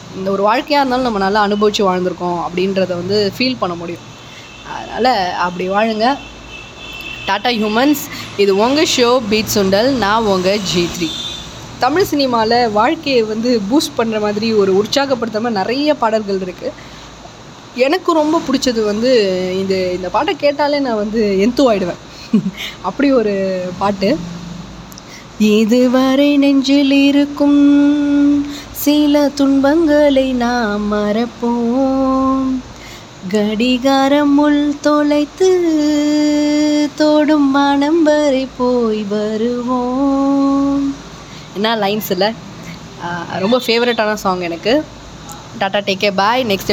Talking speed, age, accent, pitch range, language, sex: 100 wpm, 20-39, native, 195-280 Hz, Tamil, female